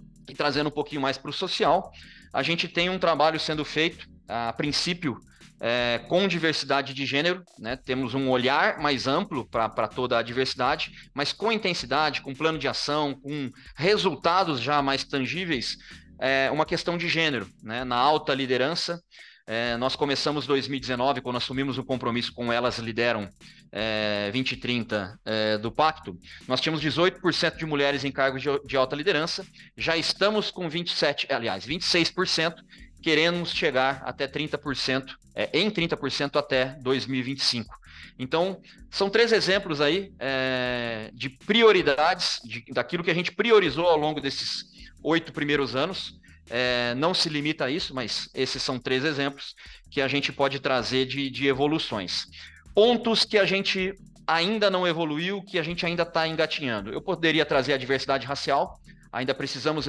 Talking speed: 150 wpm